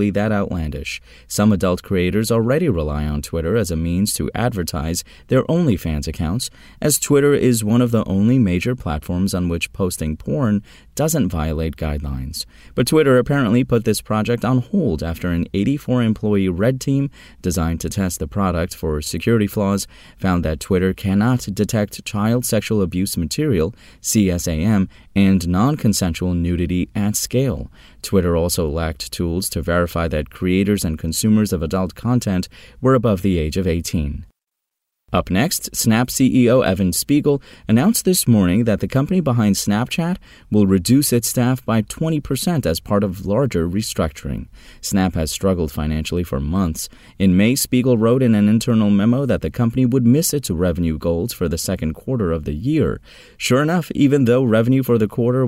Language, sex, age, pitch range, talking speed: English, male, 30-49, 85-120 Hz, 160 wpm